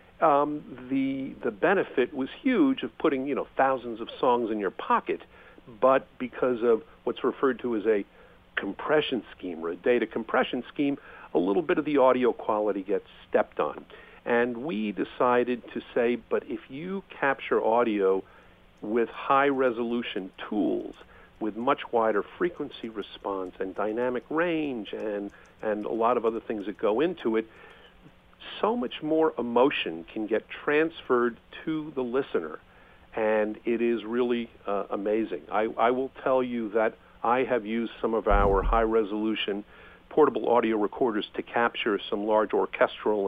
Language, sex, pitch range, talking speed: English, male, 110-140 Hz, 155 wpm